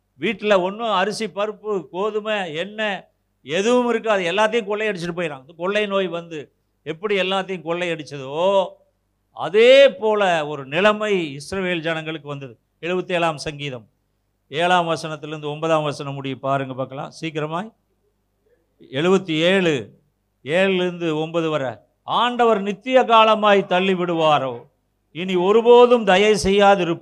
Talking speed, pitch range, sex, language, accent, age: 110 wpm, 160-215 Hz, male, Tamil, native, 50-69